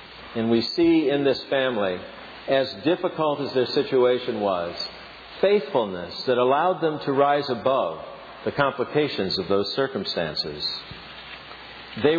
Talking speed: 125 wpm